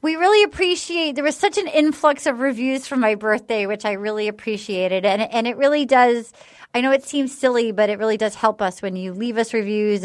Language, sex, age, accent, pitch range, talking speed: English, female, 30-49, American, 210-275 Hz, 240 wpm